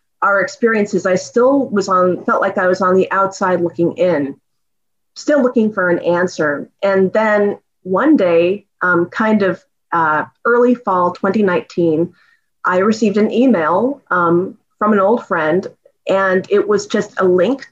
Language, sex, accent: English, female, American